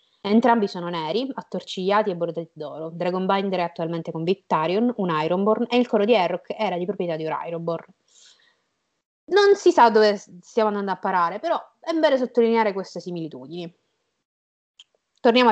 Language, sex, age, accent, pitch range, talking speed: Italian, female, 20-39, native, 170-225 Hz, 155 wpm